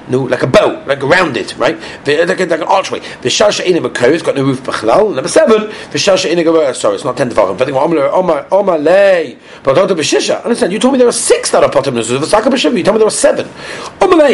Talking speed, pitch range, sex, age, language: 210 wpm, 185-255 Hz, male, 40-59, English